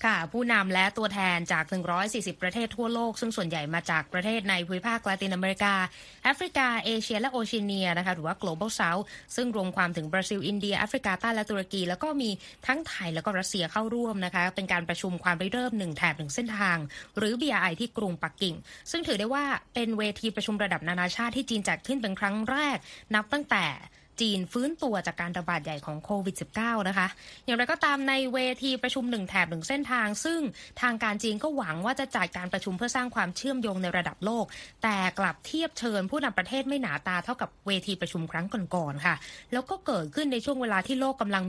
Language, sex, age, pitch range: Thai, female, 20-39, 180-240 Hz